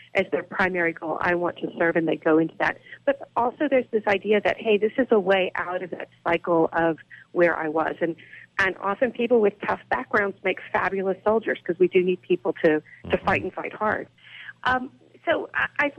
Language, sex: English, female